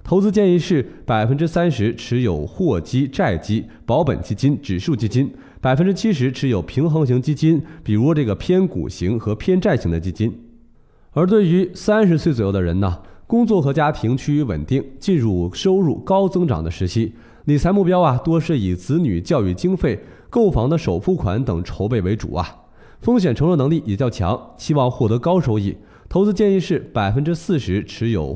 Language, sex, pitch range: Chinese, male, 105-165 Hz